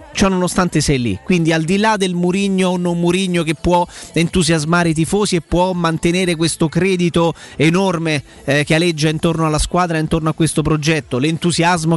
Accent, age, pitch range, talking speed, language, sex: native, 30-49, 155-180 Hz, 175 wpm, Italian, male